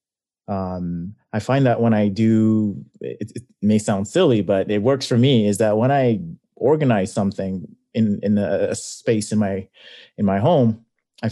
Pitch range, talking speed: 100-125 Hz, 175 wpm